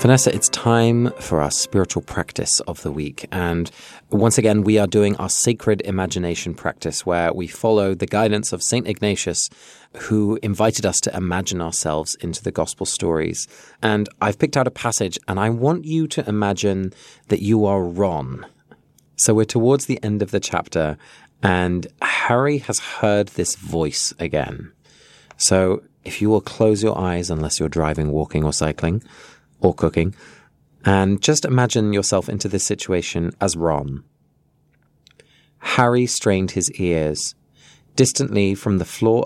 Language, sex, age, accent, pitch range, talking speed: English, male, 30-49, British, 85-110 Hz, 155 wpm